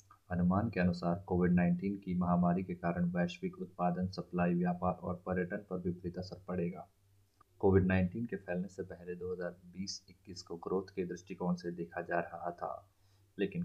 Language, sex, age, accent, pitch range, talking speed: Hindi, male, 30-49, native, 90-100 Hz, 165 wpm